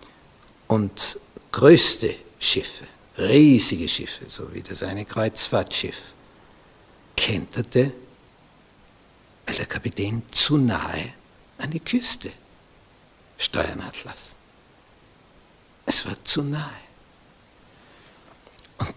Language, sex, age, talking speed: German, male, 60-79, 85 wpm